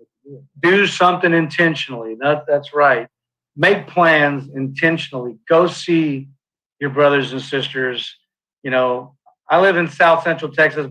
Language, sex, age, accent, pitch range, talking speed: English, male, 40-59, American, 130-150 Hz, 125 wpm